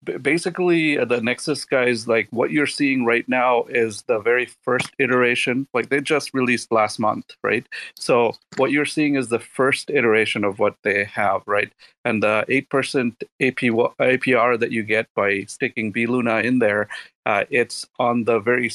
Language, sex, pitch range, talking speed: English, male, 110-130 Hz, 175 wpm